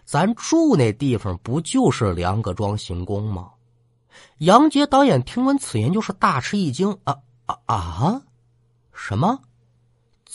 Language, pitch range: Chinese, 95-135 Hz